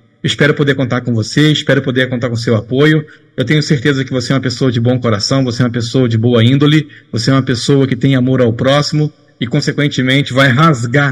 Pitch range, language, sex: 130-155 Hz, Portuguese, male